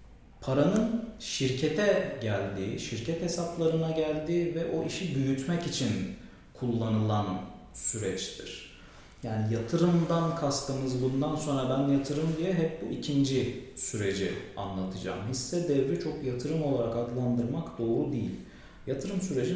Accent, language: native, Turkish